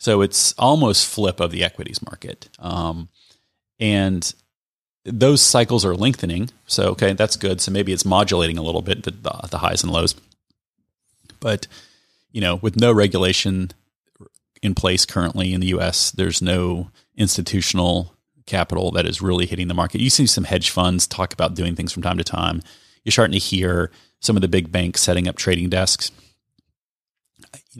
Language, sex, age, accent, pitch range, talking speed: English, male, 30-49, American, 90-100 Hz, 170 wpm